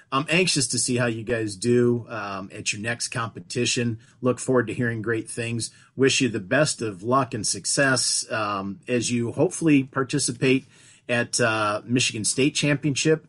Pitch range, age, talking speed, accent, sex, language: 120-135 Hz, 40-59, 165 wpm, American, male, English